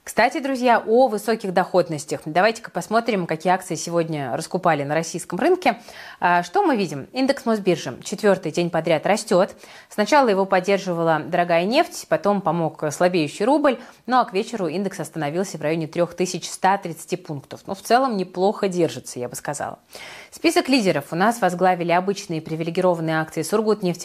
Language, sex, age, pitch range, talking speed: Russian, female, 20-39, 160-205 Hz, 150 wpm